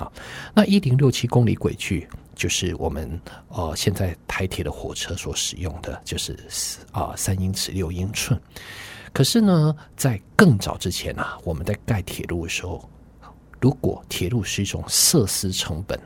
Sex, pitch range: male, 90-120 Hz